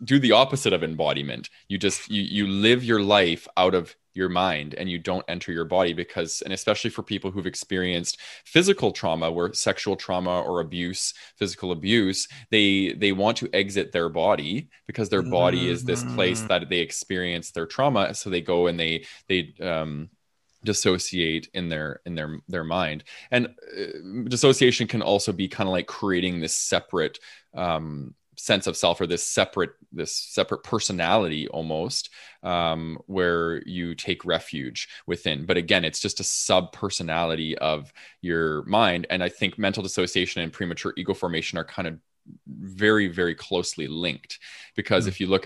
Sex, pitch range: male, 80-100 Hz